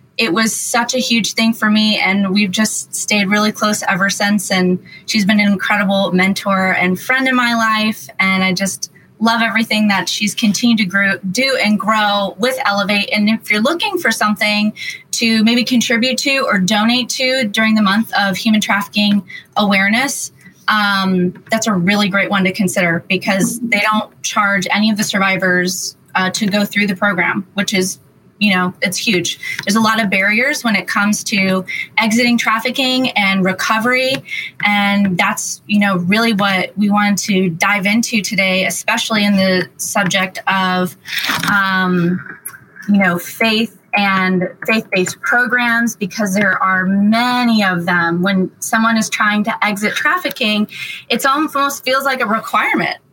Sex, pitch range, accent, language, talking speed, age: female, 190-225 Hz, American, English, 165 wpm, 20-39